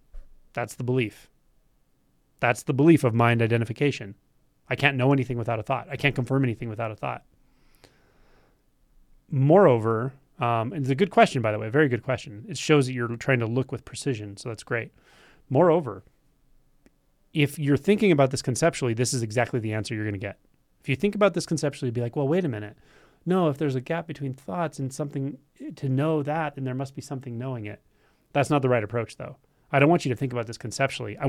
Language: English